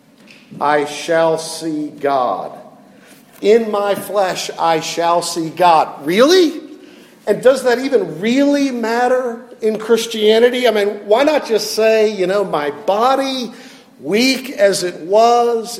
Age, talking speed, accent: 50-69, 130 wpm, American